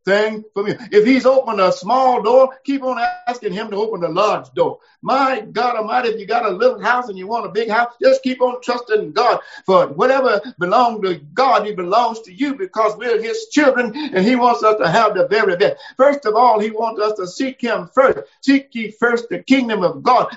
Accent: American